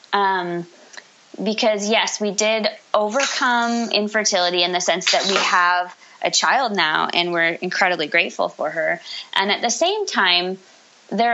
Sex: female